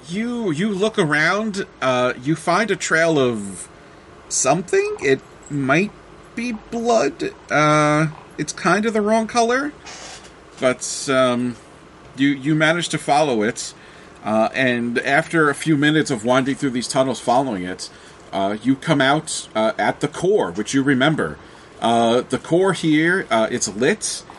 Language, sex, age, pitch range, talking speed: English, male, 40-59, 125-170 Hz, 150 wpm